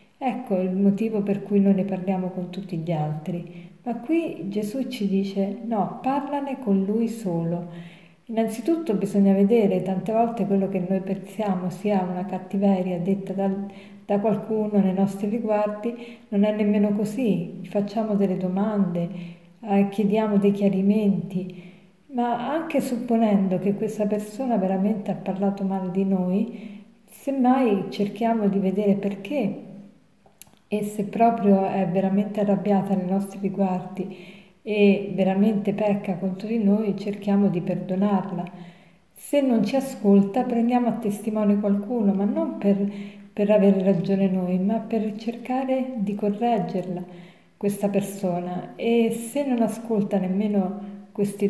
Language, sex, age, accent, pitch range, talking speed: Italian, female, 50-69, native, 190-220 Hz, 135 wpm